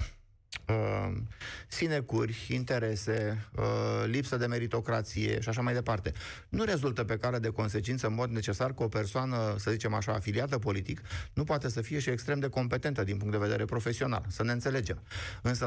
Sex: male